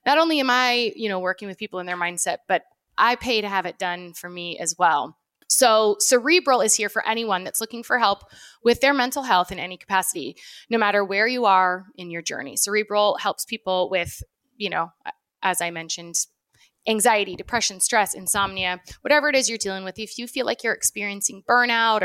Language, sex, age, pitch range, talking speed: English, female, 20-39, 190-250 Hz, 200 wpm